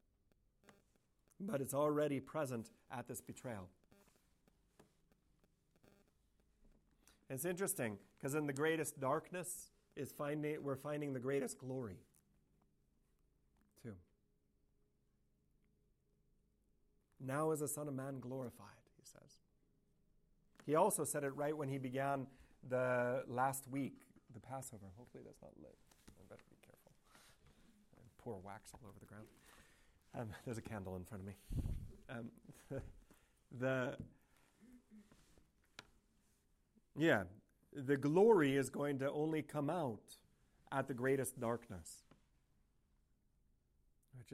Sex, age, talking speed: male, 40-59, 110 wpm